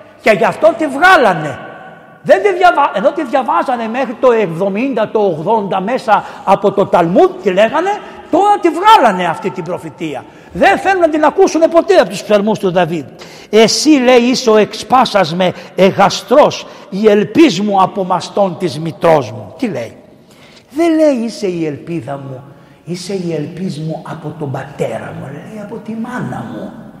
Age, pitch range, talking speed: 60-79, 195-320 Hz, 160 wpm